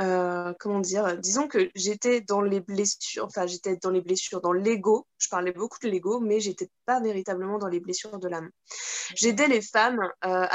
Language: French